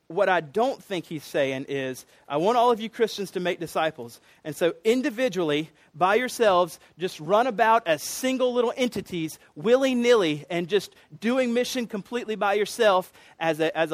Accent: American